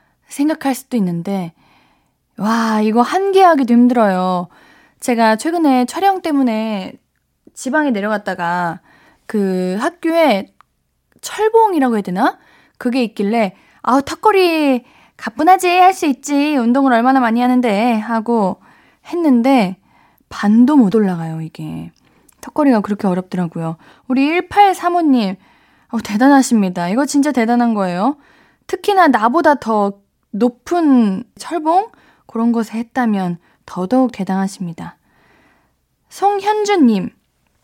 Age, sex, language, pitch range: 20-39, female, Korean, 200-290 Hz